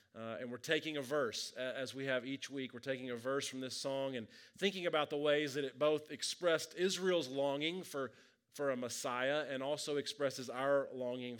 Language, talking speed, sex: English, 200 wpm, male